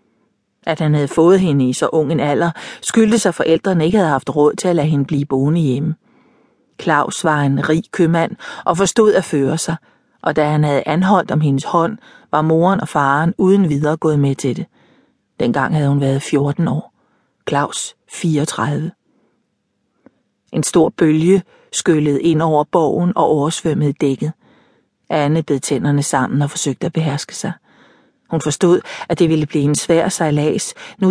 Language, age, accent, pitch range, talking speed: Danish, 40-59, native, 145-175 Hz, 175 wpm